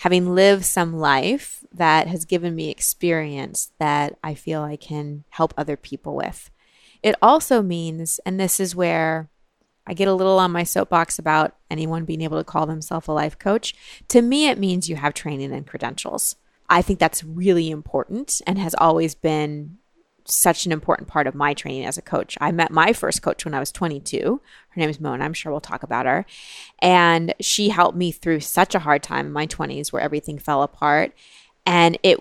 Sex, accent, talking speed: female, American, 200 wpm